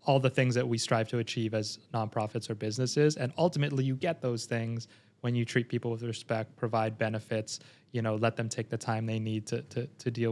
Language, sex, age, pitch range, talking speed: English, male, 20-39, 115-135 Hz, 225 wpm